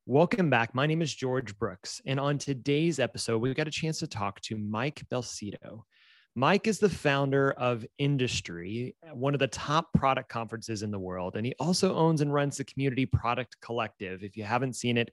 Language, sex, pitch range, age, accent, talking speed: English, male, 110-145 Hz, 30-49, American, 200 wpm